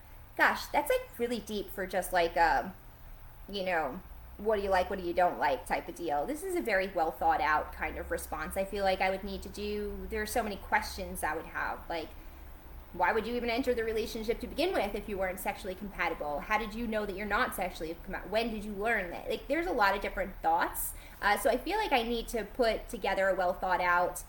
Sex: female